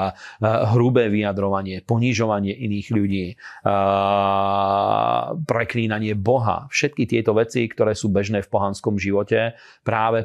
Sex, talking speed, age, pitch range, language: male, 100 wpm, 40-59, 100-115 Hz, Slovak